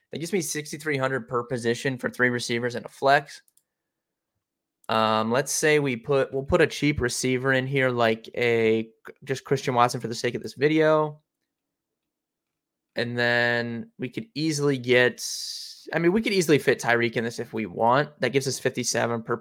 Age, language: 20-39, English